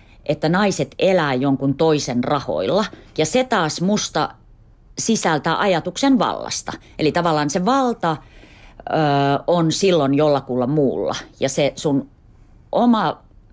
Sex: female